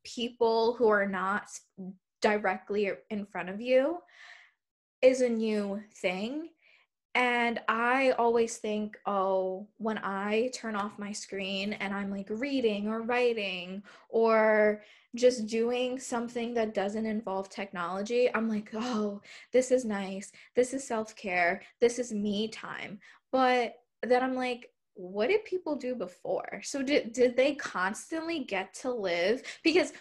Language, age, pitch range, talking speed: English, 10-29, 200-245 Hz, 140 wpm